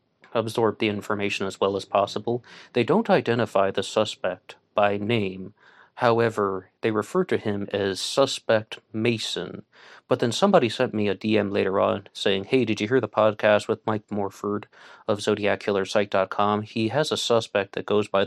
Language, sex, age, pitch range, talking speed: English, male, 30-49, 100-115 Hz, 165 wpm